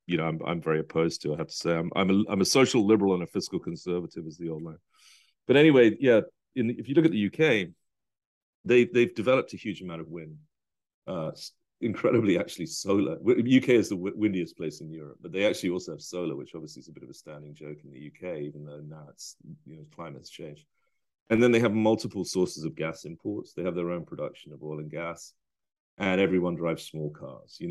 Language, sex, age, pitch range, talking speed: English, male, 40-59, 80-120 Hz, 230 wpm